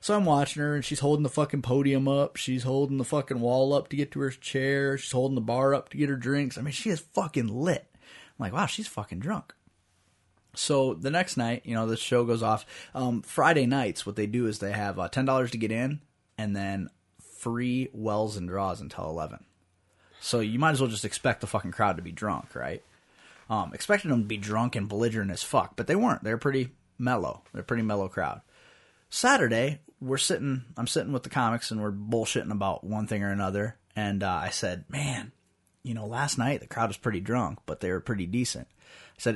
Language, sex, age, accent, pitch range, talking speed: English, male, 20-39, American, 105-140 Hz, 225 wpm